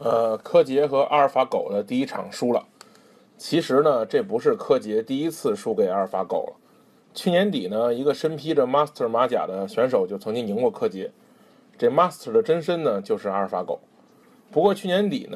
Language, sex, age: Chinese, male, 20-39